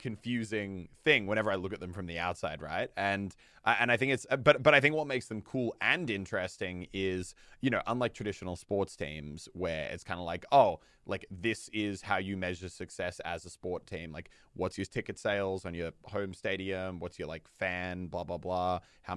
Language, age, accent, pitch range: English, 20-39, Australian, 90-105 Hz